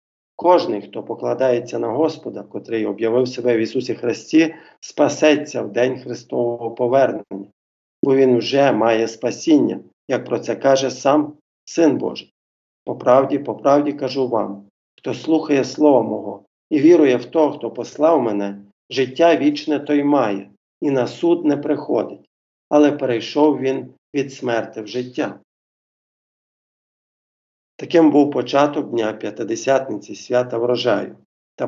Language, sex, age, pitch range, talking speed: Ukrainian, male, 50-69, 110-145 Hz, 125 wpm